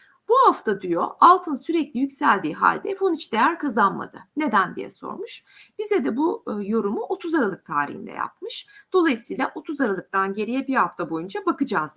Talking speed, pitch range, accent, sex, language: 150 wpm, 205-335 Hz, native, female, Turkish